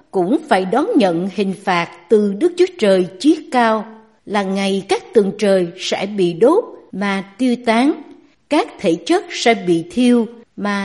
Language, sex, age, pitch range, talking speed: Vietnamese, female, 60-79, 200-280 Hz, 165 wpm